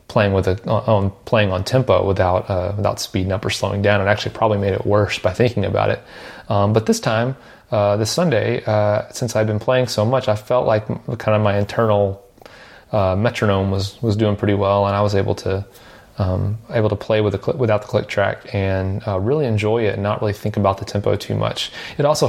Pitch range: 100-110 Hz